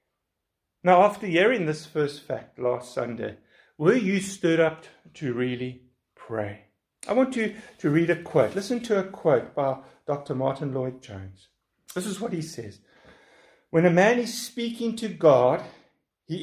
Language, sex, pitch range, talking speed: English, male, 130-190 Hz, 155 wpm